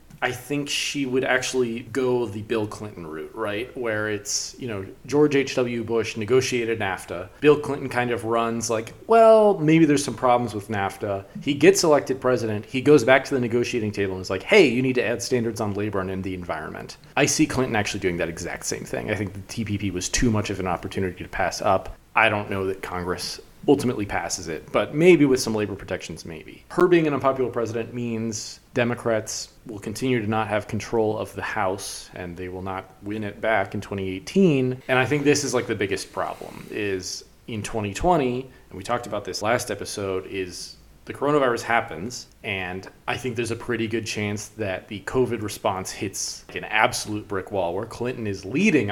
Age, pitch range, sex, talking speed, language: 30-49, 100-130 Hz, male, 200 wpm, English